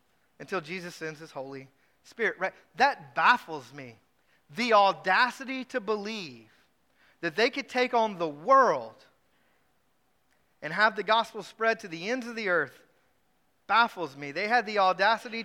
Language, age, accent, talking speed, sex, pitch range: English, 40-59, American, 150 wpm, male, 175-240 Hz